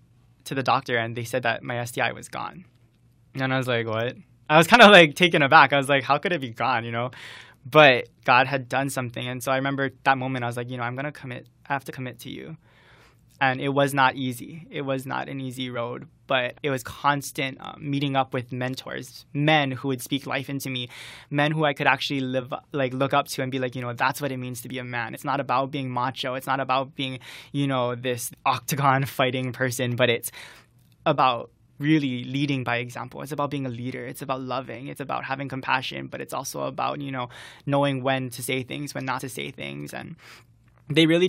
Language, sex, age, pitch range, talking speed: English, male, 20-39, 125-145 Hz, 235 wpm